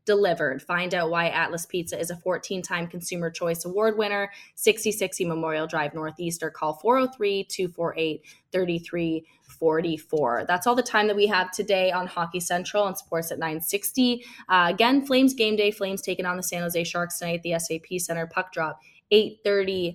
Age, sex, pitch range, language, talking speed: 20-39, female, 165-195 Hz, English, 175 wpm